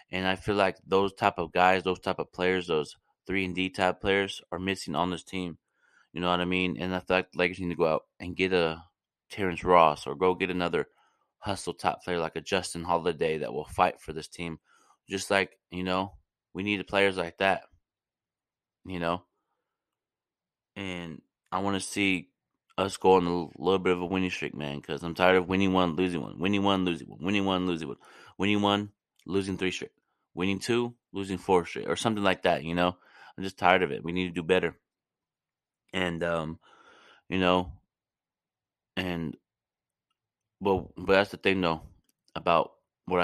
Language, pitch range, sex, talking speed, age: English, 85-95 Hz, male, 195 wpm, 20-39